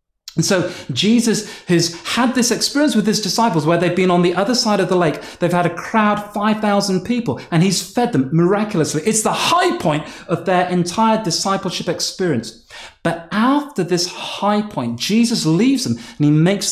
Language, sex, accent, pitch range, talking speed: English, male, British, 155-205 Hz, 185 wpm